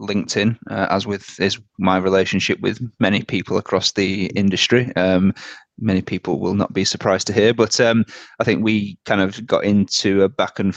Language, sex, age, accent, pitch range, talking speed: English, male, 30-49, British, 90-105 Hz, 190 wpm